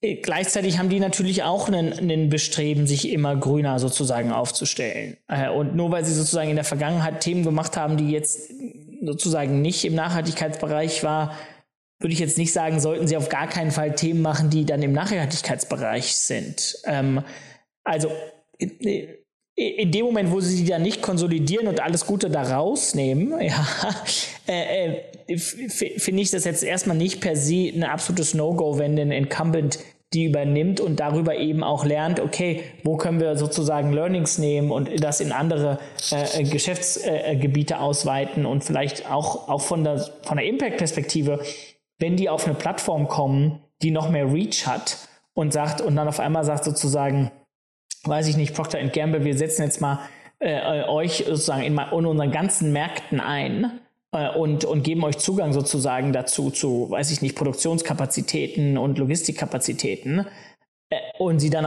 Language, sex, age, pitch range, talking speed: German, male, 20-39, 145-170 Hz, 165 wpm